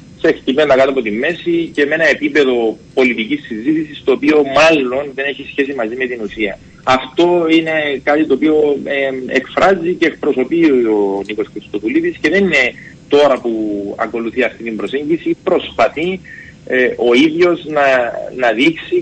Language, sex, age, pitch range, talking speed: Greek, male, 30-49, 130-170 Hz, 160 wpm